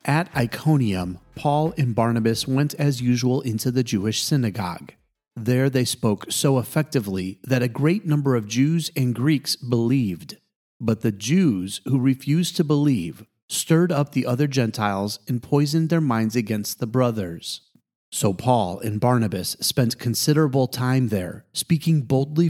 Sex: male